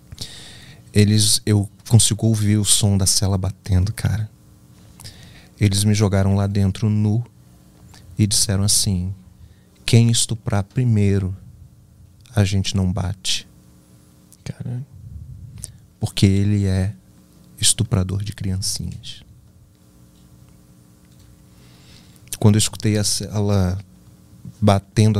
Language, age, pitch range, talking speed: Portuguese, 40-59, 95-110 Hz, 90 wpm